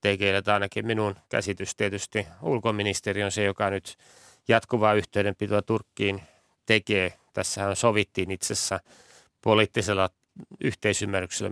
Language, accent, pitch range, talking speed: Finnish, native, 100-115 Hz, 100 wpm